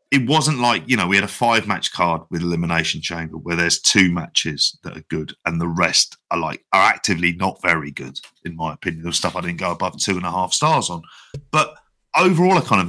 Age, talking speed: 30-49, 235 wpm